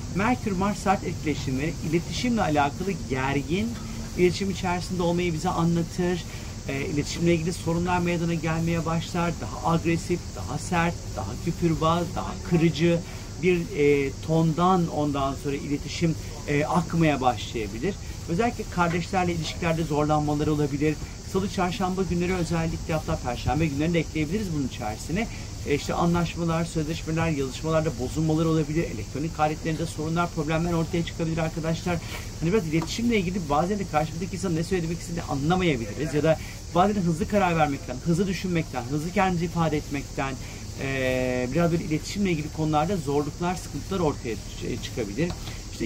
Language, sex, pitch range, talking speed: Turkish, male, 145-175 Hz, 130 wpm